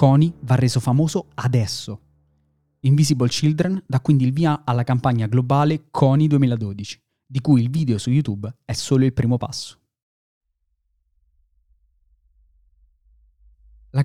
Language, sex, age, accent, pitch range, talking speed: Italian, male, 30-49, native, 110-145 Hz, 120 wpm